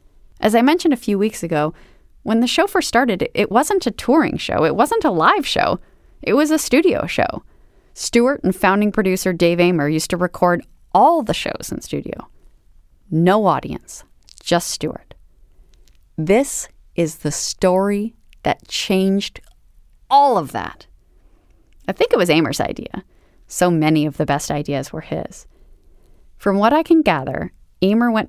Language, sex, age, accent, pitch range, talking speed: English, female, 30-49, American, 135-220 Hz, 160 wpm